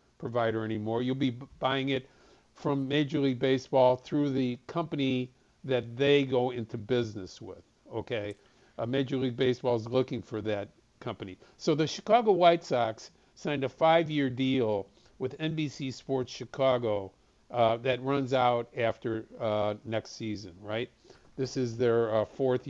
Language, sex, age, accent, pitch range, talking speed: English, male, 50-69, American, 110-135 Hz, 150 wpm